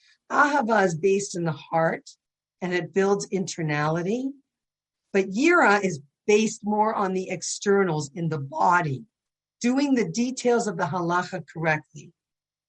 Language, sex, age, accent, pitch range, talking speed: English, female, 50-69, American, 170-210 Hz, 130 wpm